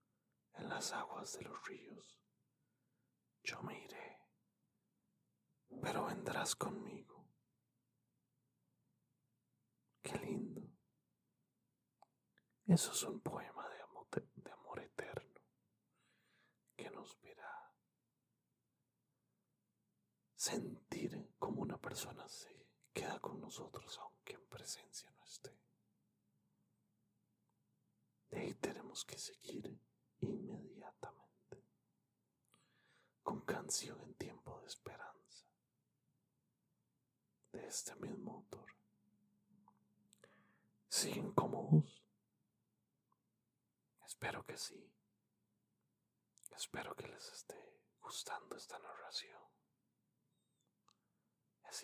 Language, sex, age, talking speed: English, male, 40-59, 80 wpm